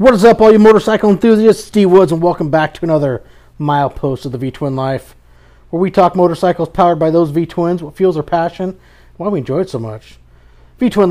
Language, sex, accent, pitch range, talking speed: English, male, American, 140-170 Hz, 210 wpm